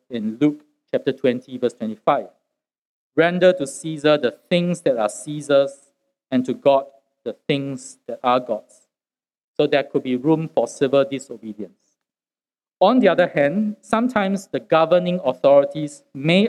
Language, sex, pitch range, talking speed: English, male, 135-180 Hz, 140 wpm